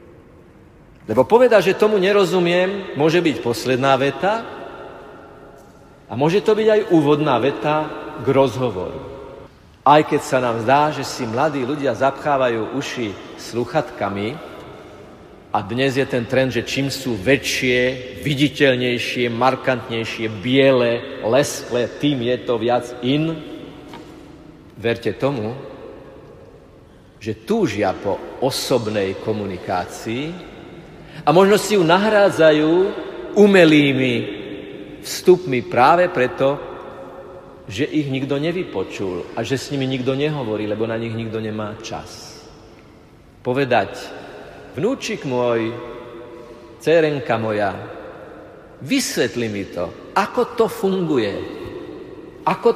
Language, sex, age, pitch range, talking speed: Slovak, male, 50-69, 120-160 Hz, 105 wpm